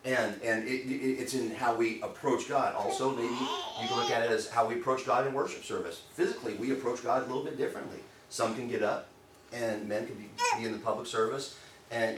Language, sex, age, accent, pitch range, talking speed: English, male, 40-59, American, 130-190 Hz, 230 wpm